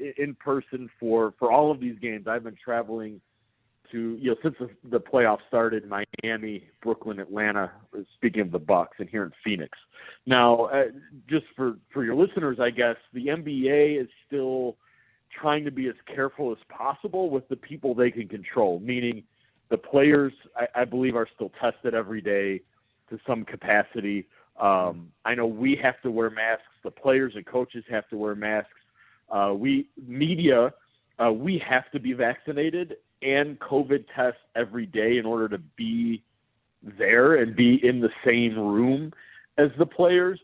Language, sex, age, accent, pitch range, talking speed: English, male, 40-59, American, 115-135 Hz, 170 wpm